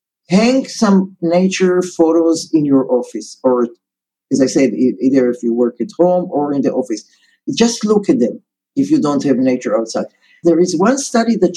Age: 50-69